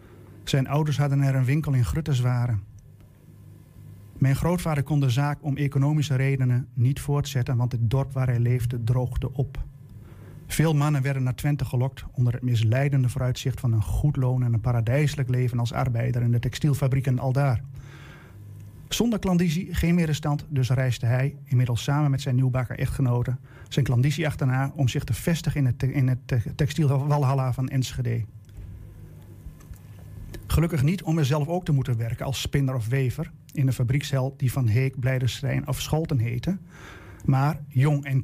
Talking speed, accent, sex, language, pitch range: 160 wpm, Dutch, male, Dutch, 125-145 Hz